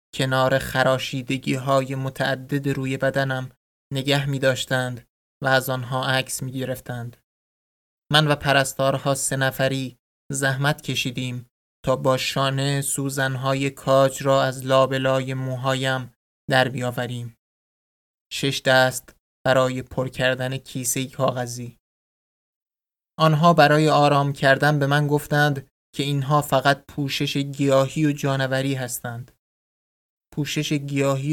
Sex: male